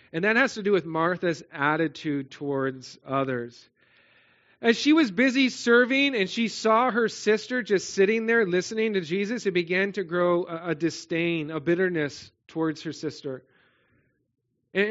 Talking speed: 155 wpm